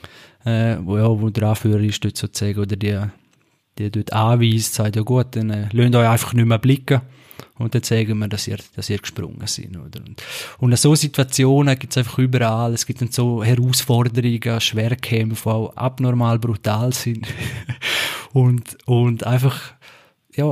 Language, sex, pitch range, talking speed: German, male, 115-130 Hz, 170 wpm